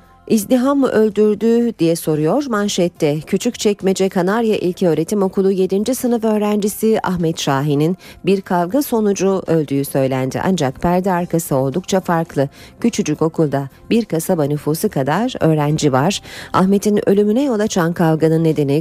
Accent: native